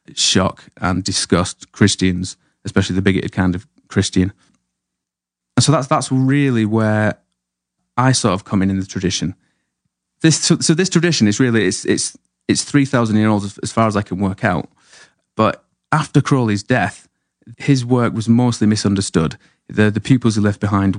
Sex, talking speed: male, 170 wpm